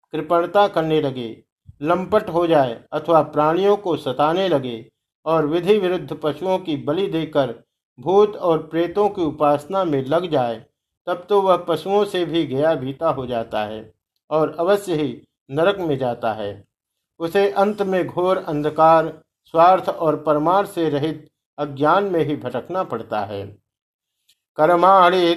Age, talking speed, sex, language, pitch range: 50-69, 145 wpm, male, Hindi, 140-175 Hz